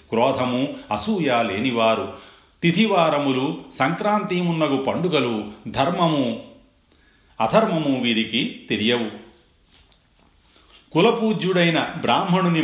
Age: 40-59